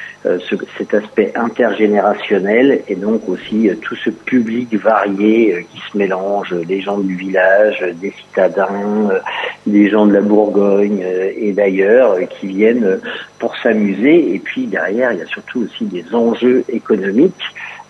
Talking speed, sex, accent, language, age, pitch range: 135 wpm, male, French, French, 50-69, 100-125 Hz